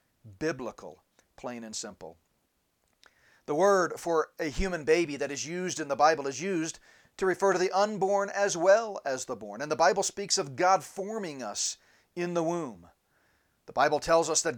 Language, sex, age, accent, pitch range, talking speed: English, male, 40-59, American, 140-190 Hz, 180 wpm